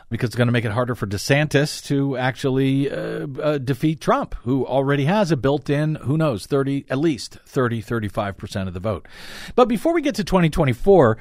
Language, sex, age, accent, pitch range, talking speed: English, male, 50-69, American, 125-175 Hz, 205 wpm